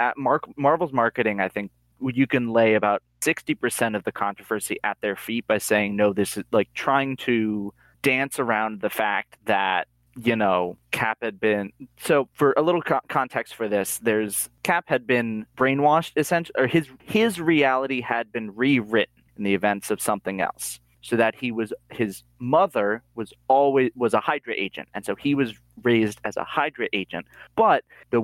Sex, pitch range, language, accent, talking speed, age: male, 105-130 Hz, English, American, 180 wpm, 30-49